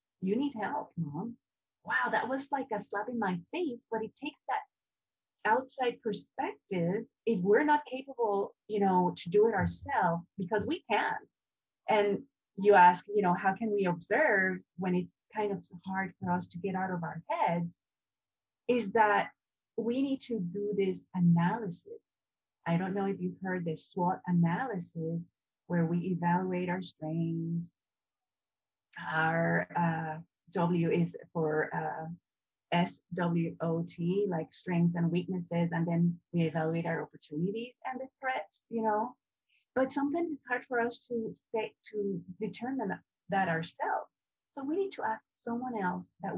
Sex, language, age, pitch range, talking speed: female, English, 30-49, 170-225 Hz, 155 wpm